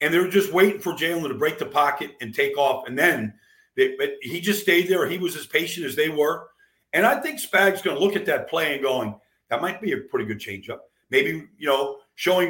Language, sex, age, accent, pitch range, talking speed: English, male, 50-69, American, 140-215 Hz, 245 wpm